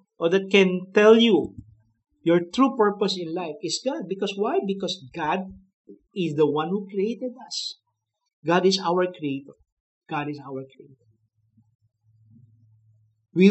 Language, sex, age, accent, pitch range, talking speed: English, male, 50-69, Filipino, 135-190 Hz, 140 wpm